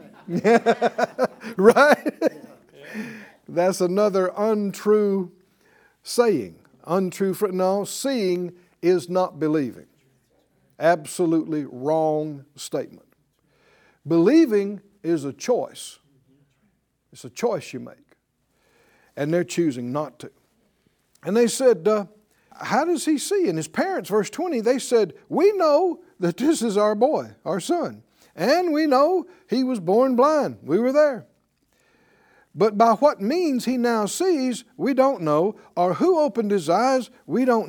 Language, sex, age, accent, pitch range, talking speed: English, male, 60-79, American, 180-270 Hz, 125 wpm